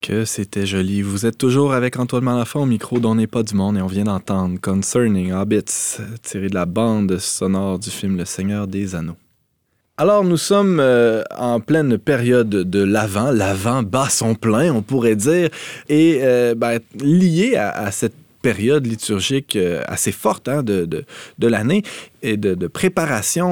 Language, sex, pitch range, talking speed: French, male, 100-130 Hz, 175 wpm